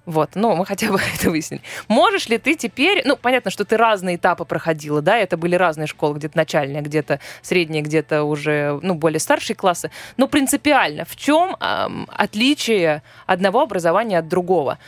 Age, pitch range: 20-39, 180-260 Hz